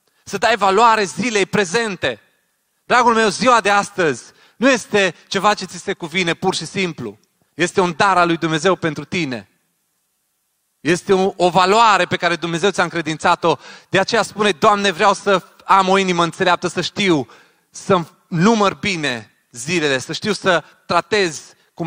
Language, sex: Romanian, male